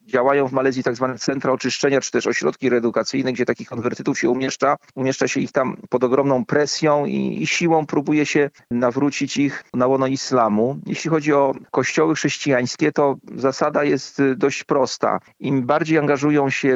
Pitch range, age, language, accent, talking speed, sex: 130-150 Hz, 40-59, Polish, native, 165 wpm, male